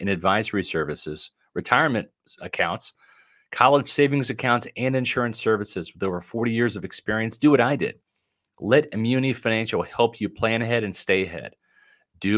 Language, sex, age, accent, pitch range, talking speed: English, male, 40-59, American, 100-120 Hz, 155 wpm